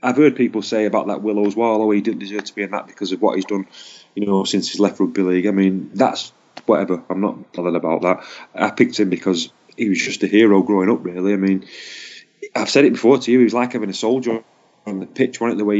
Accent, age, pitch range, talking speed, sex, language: British, 30-49, 100-125 Hz, 265 wpm, male, English